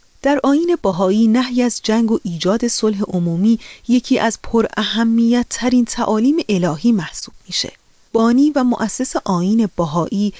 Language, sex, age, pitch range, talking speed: Persian, female, 30-49, 185-245 Hz, 140 wpm